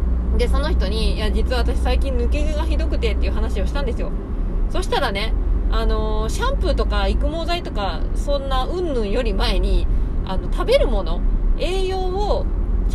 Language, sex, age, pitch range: Japanese, female, 20-39, 65-75 Hz